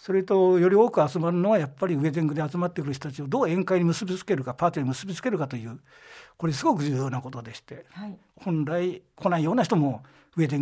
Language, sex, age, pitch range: Japanese, male, 60-79, 130-180 Hz